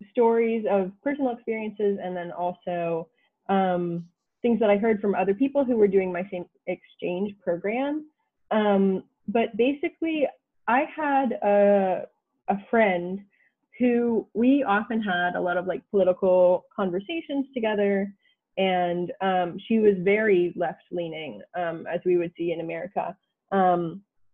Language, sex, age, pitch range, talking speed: English, female, 20-39, 185-230 Hz, 135 wpm